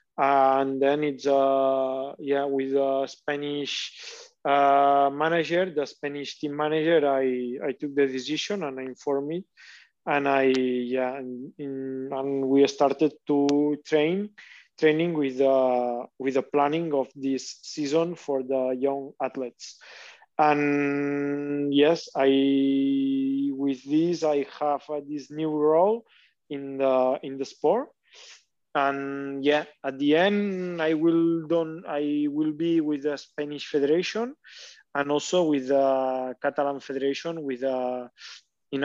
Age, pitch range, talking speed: 20-39, 135-150 Hz, 135 wpm